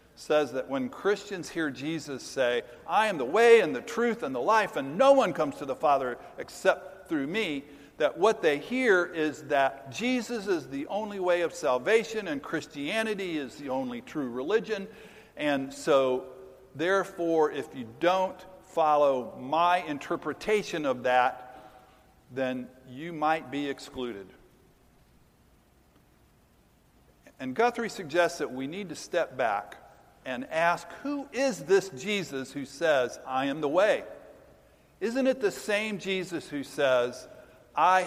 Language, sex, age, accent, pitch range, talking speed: English, male, 50-69, American, 135-200 Hz, 145 wpm